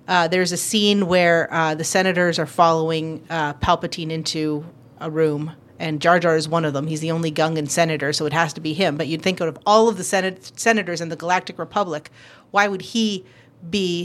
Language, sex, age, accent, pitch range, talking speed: English, female, 30-49, American, 155-185 Hz, 215 wpm